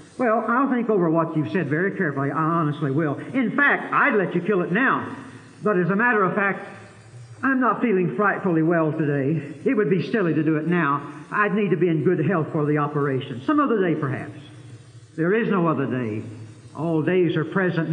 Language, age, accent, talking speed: English, 60-79, American, 210 wpm